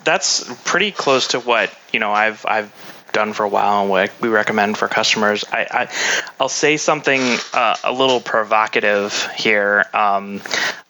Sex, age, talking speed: male, 20-39, 165 wpm